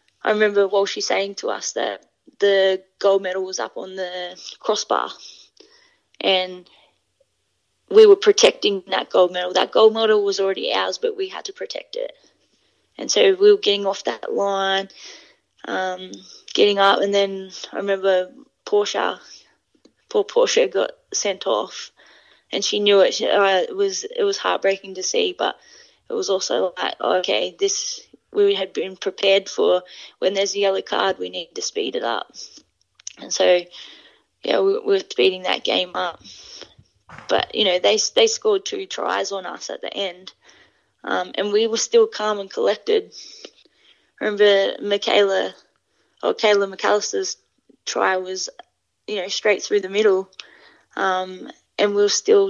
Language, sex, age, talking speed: English, female, 20-39, 160 wpm